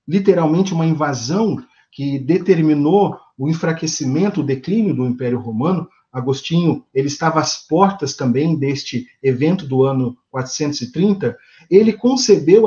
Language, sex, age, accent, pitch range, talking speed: Portuguese, male, 50-69, Brazilian, 145-210 Hz, 115 wpm